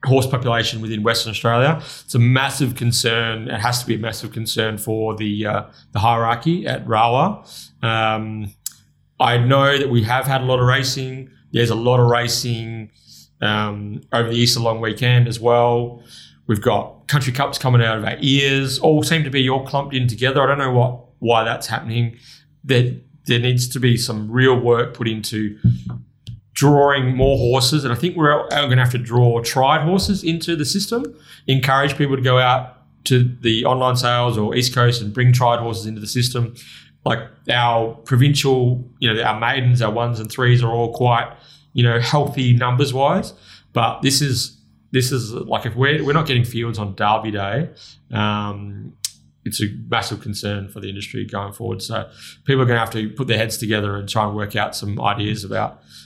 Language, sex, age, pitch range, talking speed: English, male, 30-49, 110-130 Hz, 195 wpm